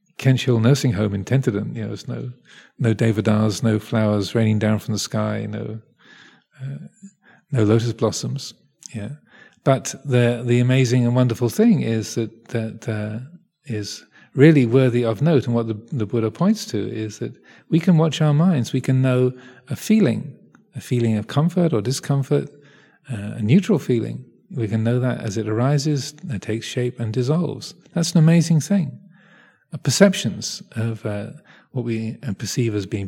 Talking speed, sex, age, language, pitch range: 165 wpm, male, 40-59, English, 110-145 Hz